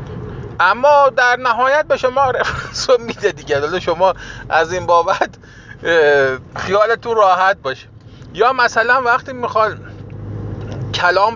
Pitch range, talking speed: 140-210 Hz, 115 wpm